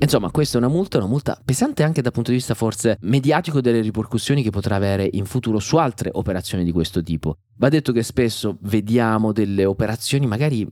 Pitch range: 100-130 Hz